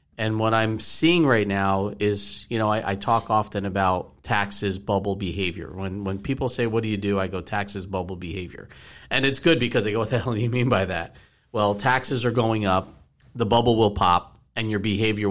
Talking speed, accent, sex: 220 wpm, American, male